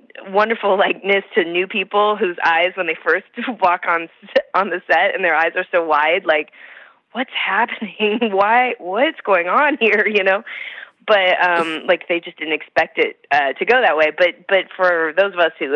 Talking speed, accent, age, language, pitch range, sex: 195 wpm, American, 20-39, English, 155-195 Hz, female